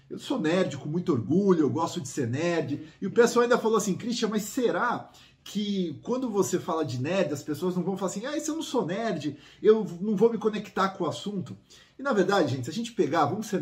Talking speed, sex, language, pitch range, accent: 245 wpm, male, Portuguese, 155-210 Hz, Brazilian